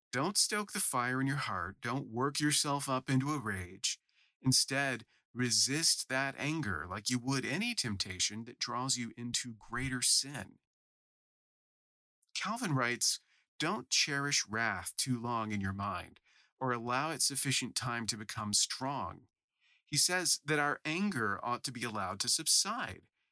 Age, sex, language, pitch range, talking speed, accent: 40-59, male, English, 110-150 Hz, 150 wpm, American